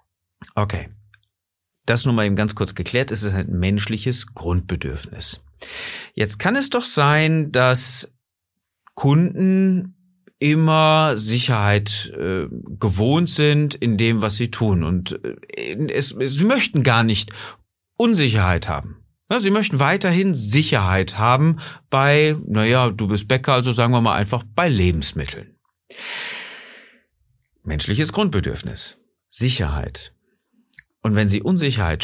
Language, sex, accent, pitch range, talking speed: German, male, German, 95-135 Hz, 115 wpm